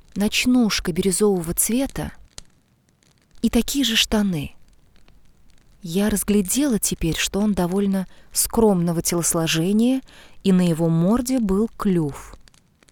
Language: Russian